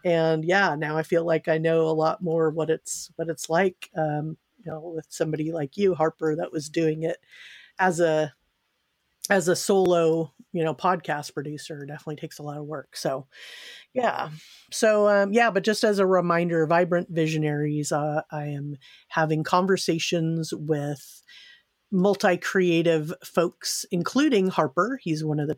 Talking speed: 160 wpm